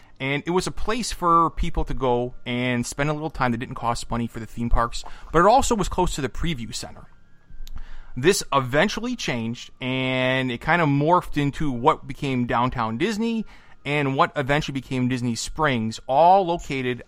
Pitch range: 120-170 Hz